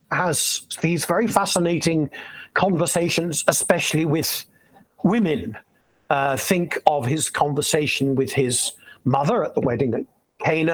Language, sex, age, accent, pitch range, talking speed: English, male, 60-79, British, 135-180 Hz, 115 wpm